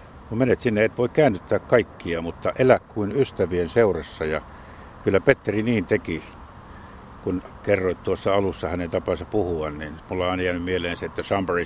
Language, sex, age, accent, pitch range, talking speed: Finnish, male, 60-79, native, 90-115 Hz, 170 wpm